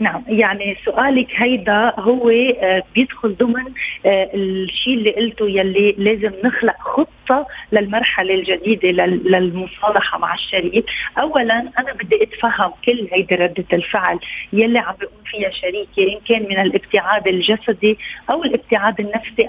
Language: Arabic